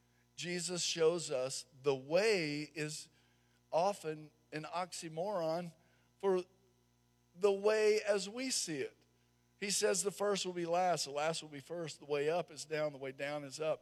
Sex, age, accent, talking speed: male, 50-69, American, 165 wpm